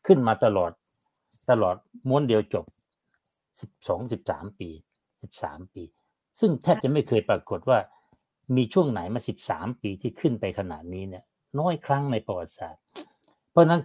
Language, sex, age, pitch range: Thai, male, 60-79, 105-140 Hz